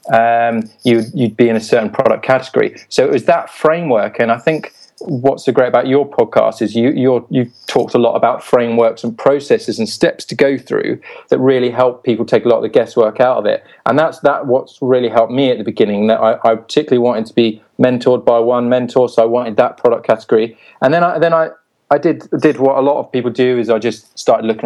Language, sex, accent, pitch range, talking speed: English, male, British, 115-140 Hz, 240 wpm